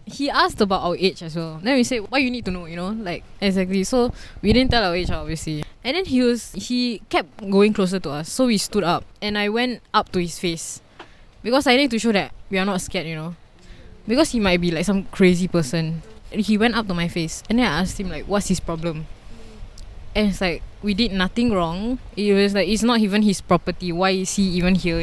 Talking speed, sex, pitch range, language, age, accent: 245 wpm, female, 175-225 Hz, English, 10-29, Malaysian